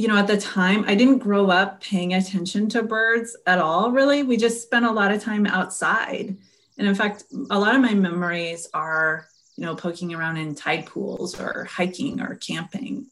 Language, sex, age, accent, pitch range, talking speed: English, female, 30-49, American, 170-210 Hz, 200 wpm